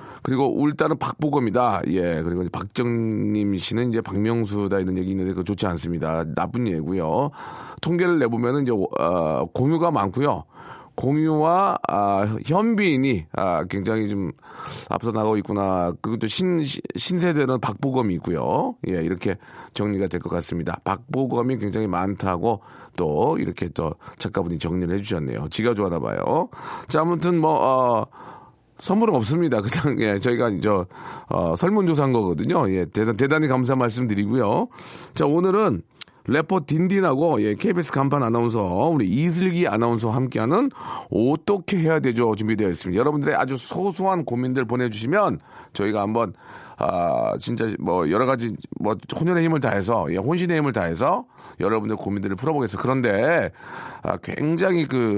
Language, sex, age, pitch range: Korean, male, 40-59, 100-150 Hz